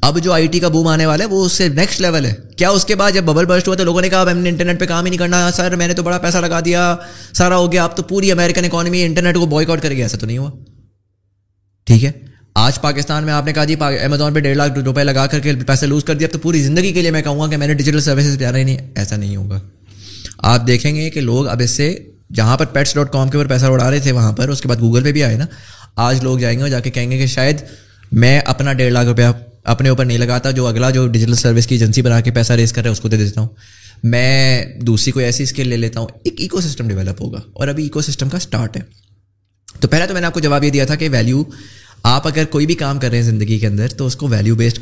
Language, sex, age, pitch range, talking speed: Urdu, male, 20-39, 115-150 Hz, 265 wpm